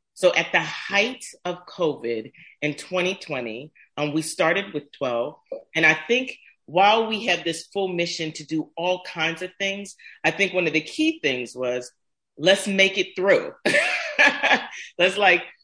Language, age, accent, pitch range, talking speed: English, 40-59, American, 145-185 Hz, 160 wpm